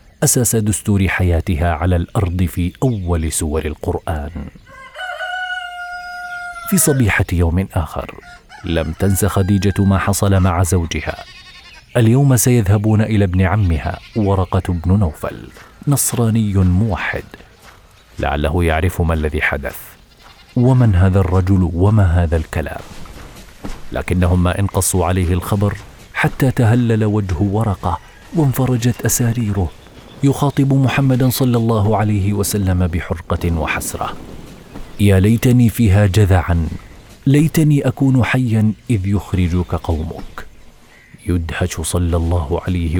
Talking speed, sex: 105 wpm, male